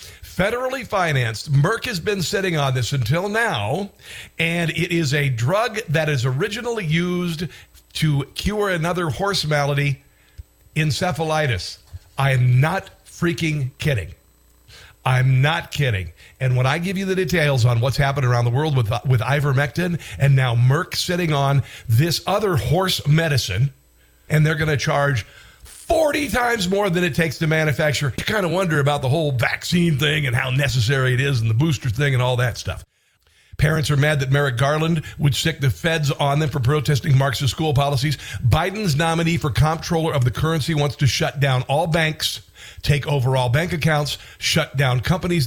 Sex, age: male, 50-69